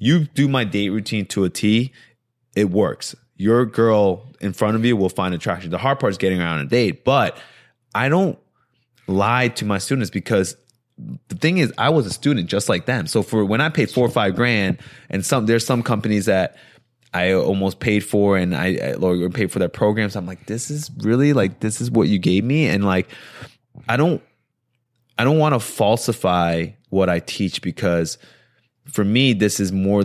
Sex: male